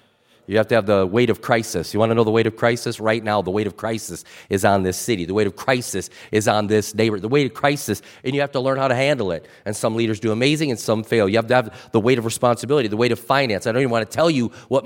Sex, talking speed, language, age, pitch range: male, 305 wpm, English, 40-59, 125-175 Hz